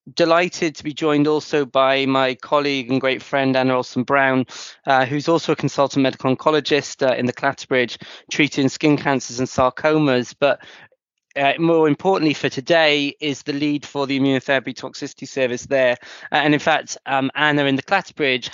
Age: 20-39